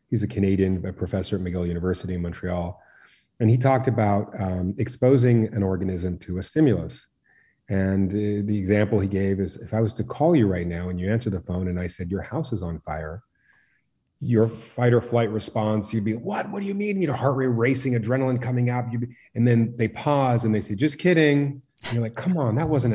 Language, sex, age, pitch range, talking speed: English, male, 30-49, 100-135 Hz, 215 wpm